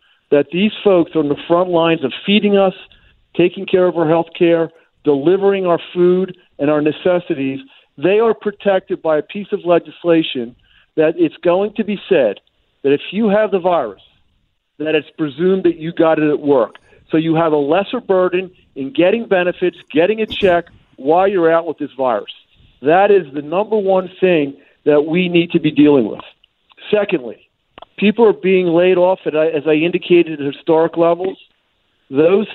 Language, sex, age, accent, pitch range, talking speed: English, male, 50-69, American, 155-190 Hz, 180 wpm